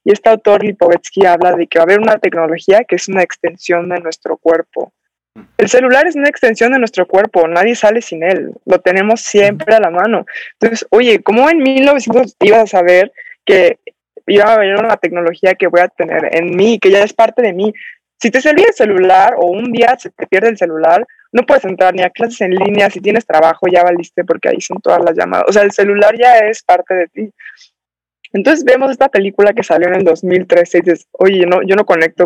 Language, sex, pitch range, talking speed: Spanish, female, 175-230 Hz, 225 wpm